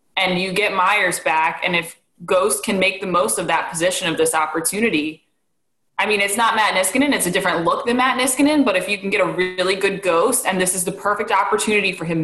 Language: English